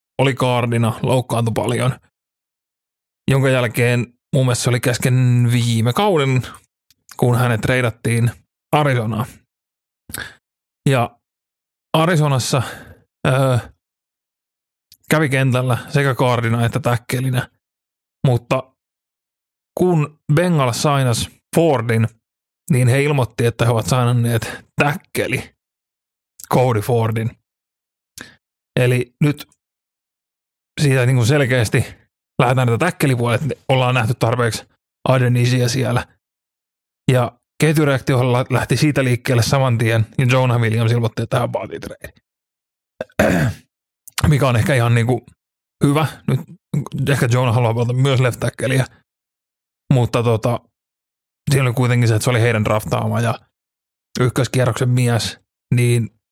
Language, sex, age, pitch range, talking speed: Finnish, male, 30-49, 115-135 Hz, 100 wpm